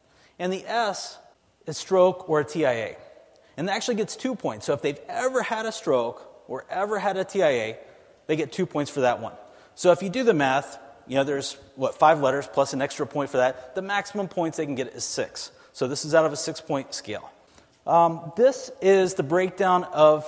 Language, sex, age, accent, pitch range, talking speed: English, male, 30-49, American, 135-195 Hz, 215 wpm